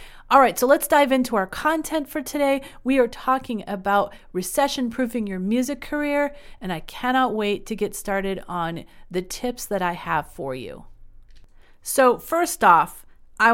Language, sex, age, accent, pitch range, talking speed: English, female, 30-49, American, 175-225 Hz, 165 wpm